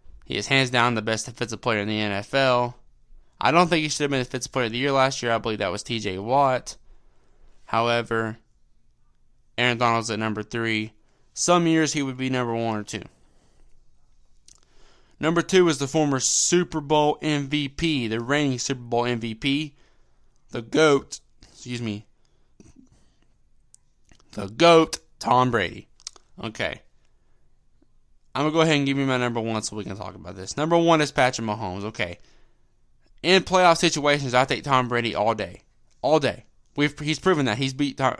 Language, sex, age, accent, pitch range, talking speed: English, male, 20-39, American, 110-145 Hz, 170 wpm